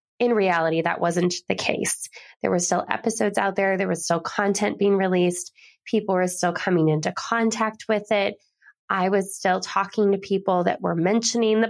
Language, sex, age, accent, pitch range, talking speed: English, female, 20-39, American, 180-225 Hz, 185 wpm